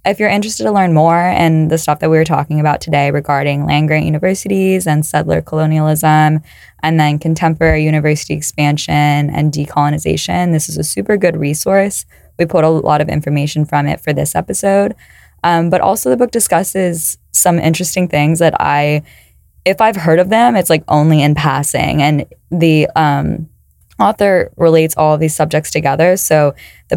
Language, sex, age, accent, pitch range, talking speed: English, female, 10-29, American, 150-170 Hz, 175 wpm